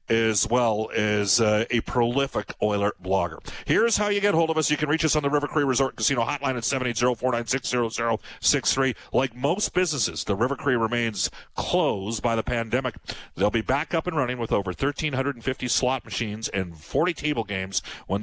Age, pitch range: 50-69, 110-135 Hz